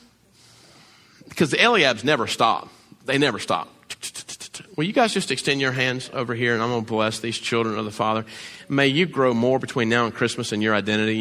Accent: American